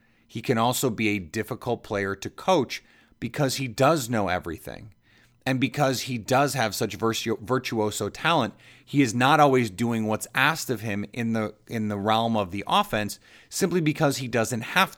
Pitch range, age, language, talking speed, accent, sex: 110-135 Hz, 30-49, English, 175 wpm, American, male